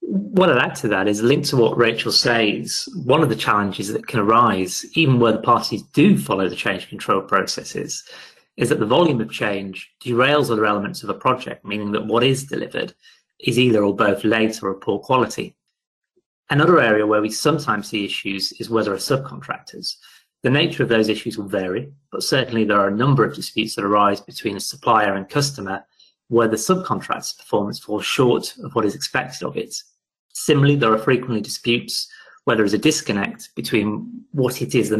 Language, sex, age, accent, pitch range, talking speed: English, male, 30-49, British, 105-145 Hz, 195 wpm